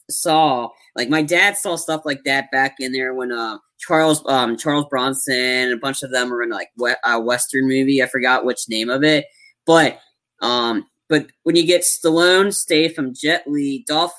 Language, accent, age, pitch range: English, American, 20-39, 130-170 Hz